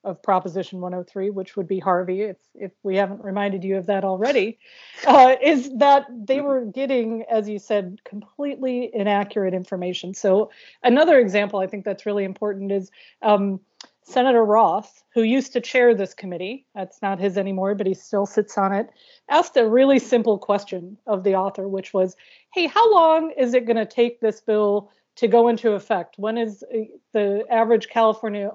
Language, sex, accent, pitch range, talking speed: English, female, American, 200-240 Hz, 175 wpm